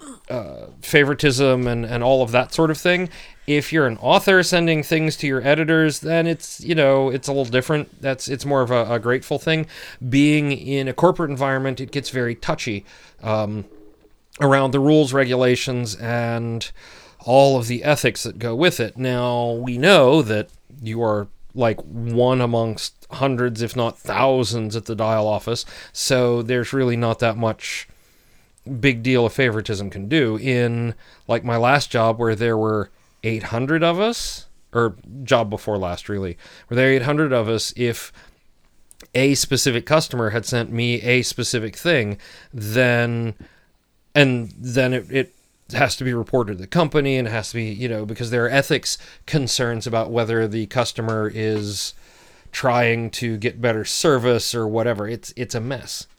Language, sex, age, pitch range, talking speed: English, male, 40-59, 115-135 Hz, 170 wpm